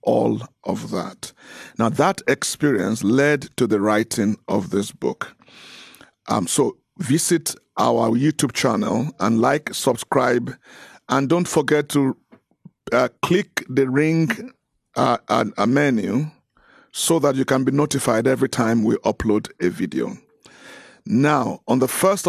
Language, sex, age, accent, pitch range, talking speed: English, male, 50-69, Nigerian, 130-160 Hz, 135 wpm